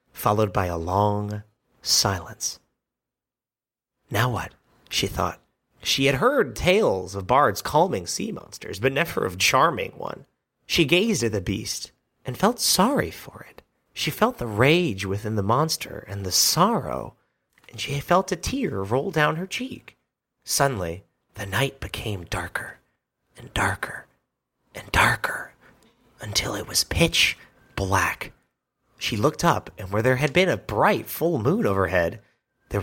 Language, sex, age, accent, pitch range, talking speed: English, male, 30-49, American, 105-140 Hz, 145 wpm